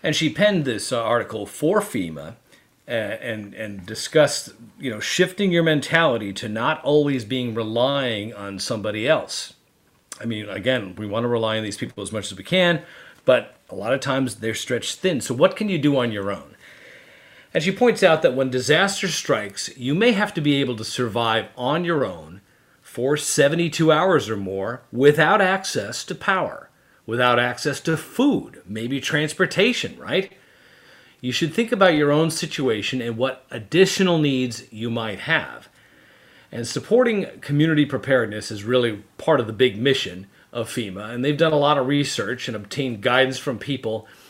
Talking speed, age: 175 wpm, 40-59